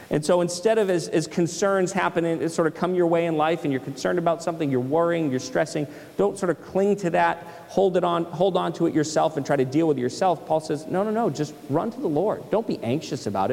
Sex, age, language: male, 30-49, English